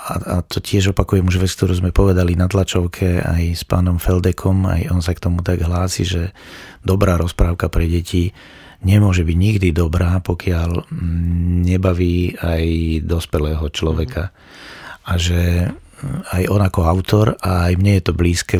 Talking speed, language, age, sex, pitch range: 155 wpm, Slovak, 30-49, male, 85-95 Hz